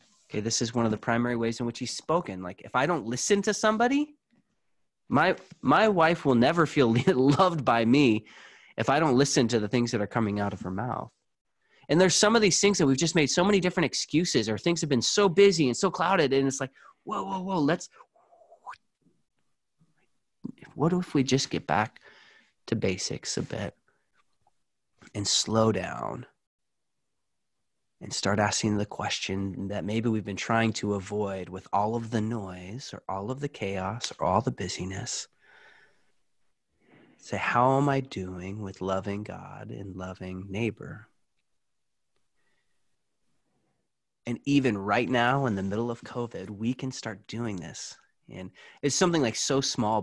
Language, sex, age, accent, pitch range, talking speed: English, male, 30-49, American, 100-145 Hz, 170 wpm